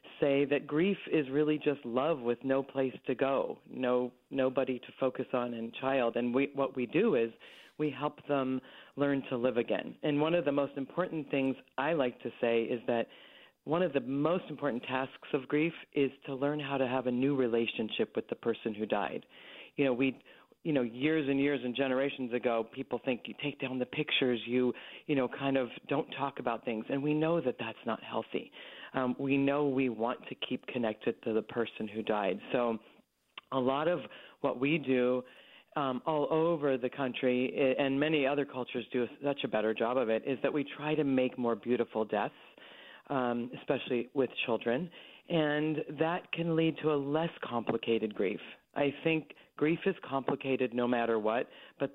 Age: 40-59